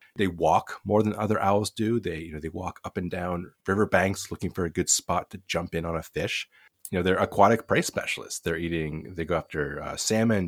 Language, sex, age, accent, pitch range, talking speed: English, male, 30-49, American, 85-105 Hz, 235 wpm